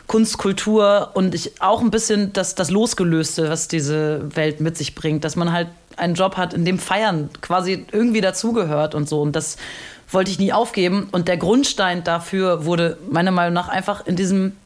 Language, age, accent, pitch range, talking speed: German, 30-49, German, 155-185 Hz, 190 wpm